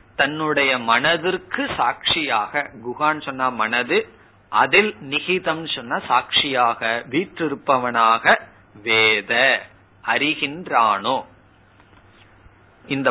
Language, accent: Tamil, native